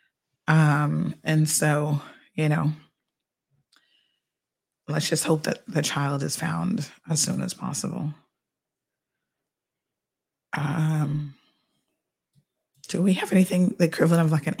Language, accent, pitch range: English, American, 150-170 Hz